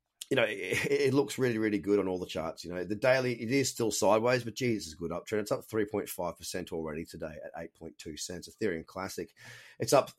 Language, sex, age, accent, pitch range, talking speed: English, male, 30-49, Australian, 95-120 Hz, 230 wpm